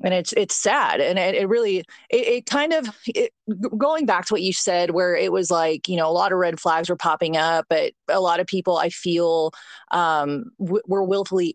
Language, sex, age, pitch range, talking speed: English, female, 30-49, 170-225 Hz, 230 wpm